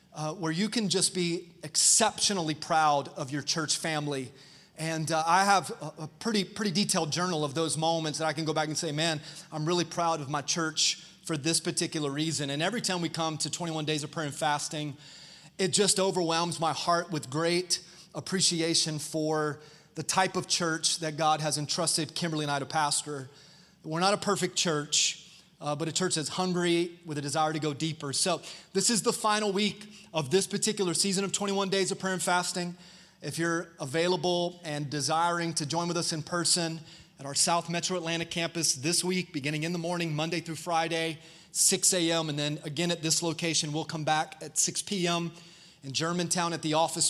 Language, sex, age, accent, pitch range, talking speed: English, male, 30-49, American, 155-175 Hz, 200 wpm